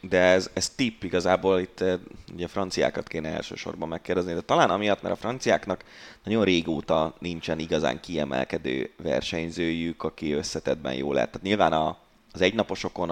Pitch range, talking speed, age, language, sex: 80-105 Hz, 145 wpm, 30-49, Hungarian, male